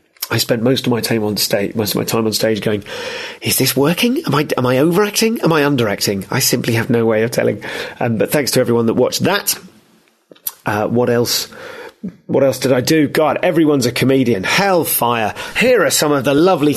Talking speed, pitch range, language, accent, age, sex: 215 wpm, 120-155 Hz, English, British, 30-49, male